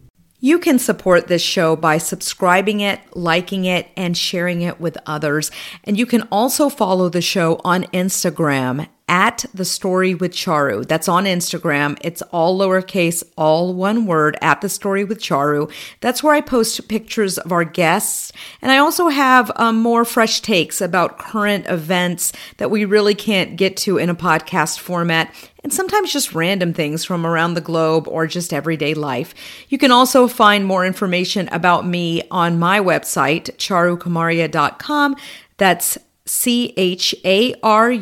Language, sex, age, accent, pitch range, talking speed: English, female, 40-59, American, 165-215 Hz, 160 wpm